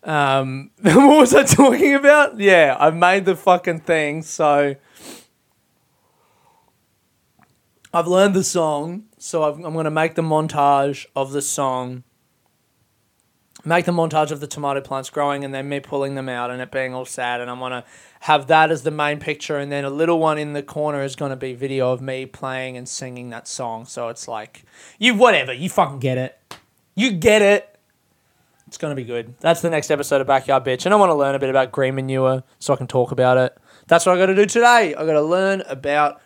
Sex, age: male, 20-39